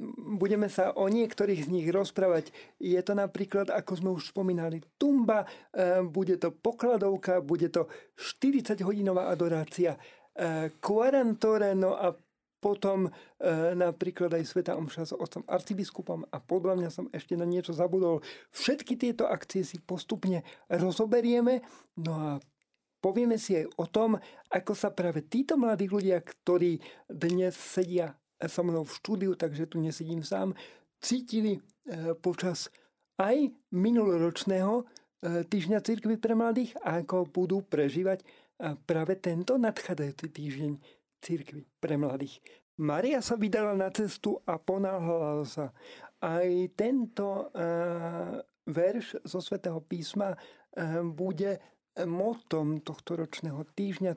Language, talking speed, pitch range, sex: Slovak, 125 wpm, 170-210 Hz, male